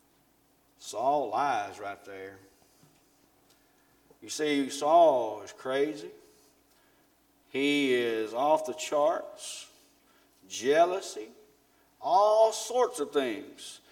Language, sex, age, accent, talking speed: English, male, 40-59, American, 80 wpm